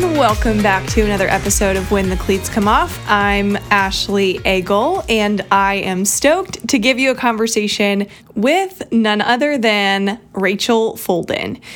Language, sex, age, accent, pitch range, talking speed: English, female, 20-39, American, 195-250 Hz, 150 wpm